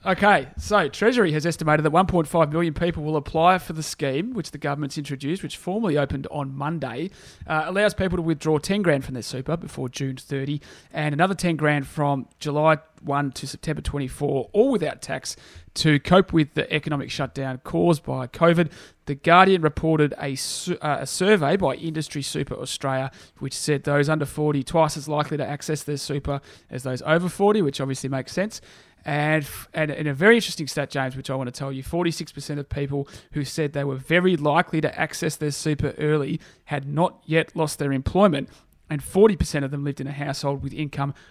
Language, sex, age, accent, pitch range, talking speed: English, male, 30-49, Australian, 140-165 Hz, 195 wpm